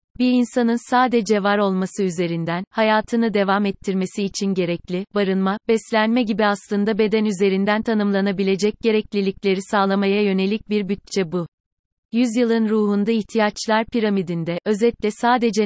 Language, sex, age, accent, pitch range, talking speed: Turkish, female, 30-49, native, 190-220 Hz, 115 wpm